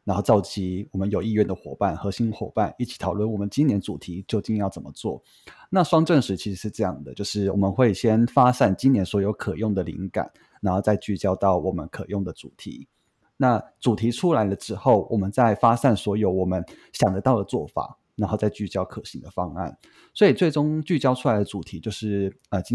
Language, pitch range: Chinese, 95-110 Hz